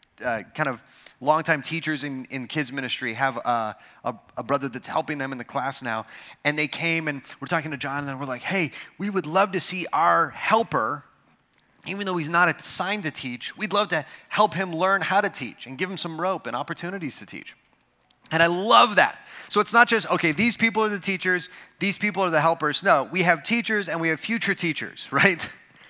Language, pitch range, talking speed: English, 150-200 Hz, 220 wpm